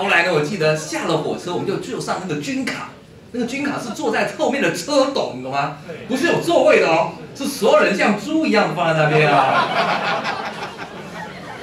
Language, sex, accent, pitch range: Chinese, male, native, 135-210 Hz